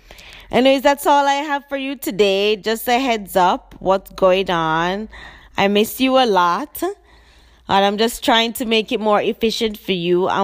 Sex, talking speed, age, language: female, 185 wpm, 20-39, English